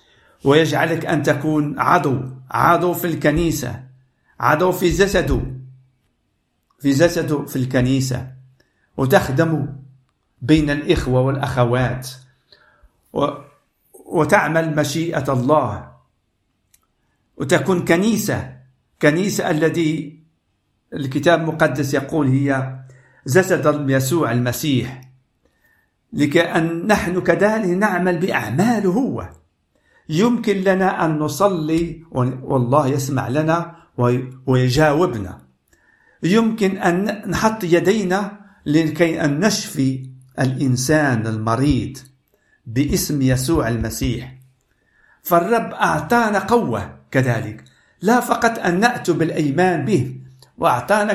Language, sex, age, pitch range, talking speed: Arabic, male, 50-69, 130-175 Hz, 80 wpm